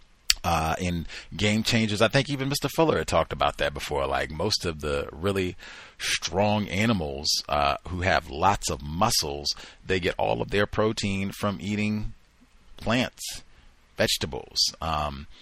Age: 40-59